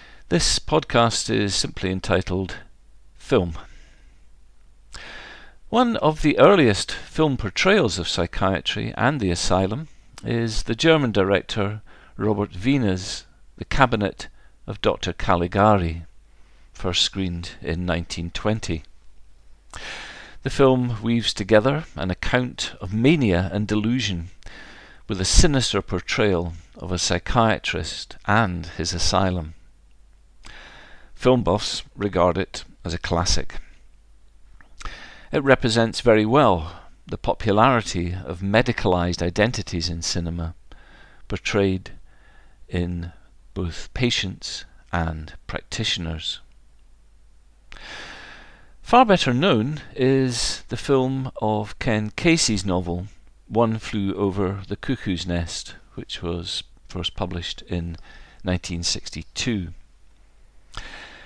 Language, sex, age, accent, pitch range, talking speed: English, male, 50-69, British, 85-115 Hz, 95 wpm